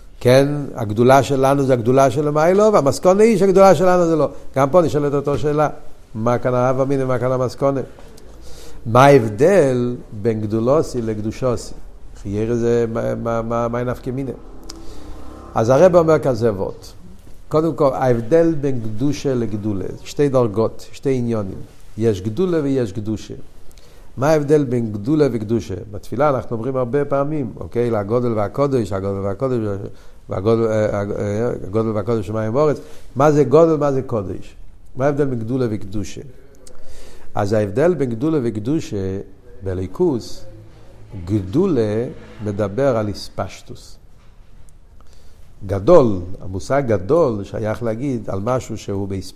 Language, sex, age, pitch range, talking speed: Hebrew, male, 50-69, 105-140 Hz, 105 wpm